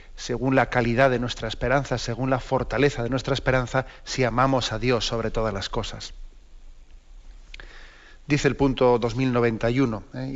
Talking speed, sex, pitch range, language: 140 wpm, male, 115-135 Hz, Spanish